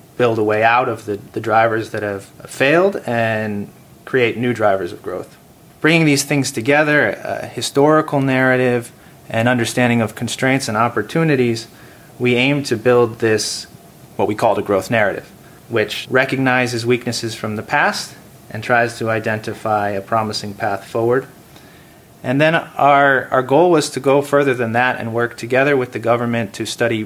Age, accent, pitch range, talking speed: 30-49, American, 110-130 Hz, 165 wpm